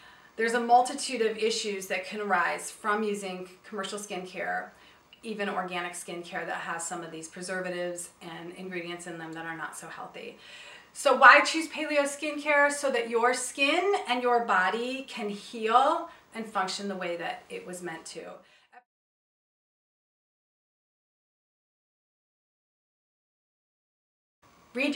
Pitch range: 185-245 Hz